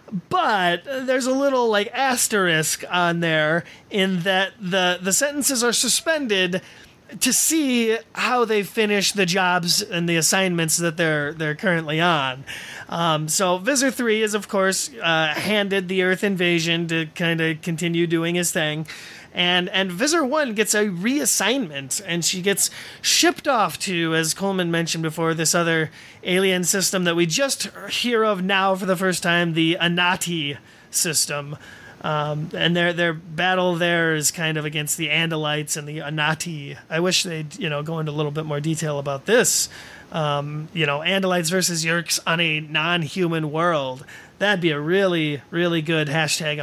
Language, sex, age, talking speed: English, male, 30-49, 165 wpm